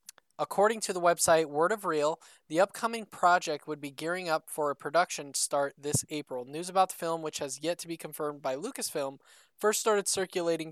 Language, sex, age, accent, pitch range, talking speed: English, male, 20-39, American, 140-175 Hz, 195 wpm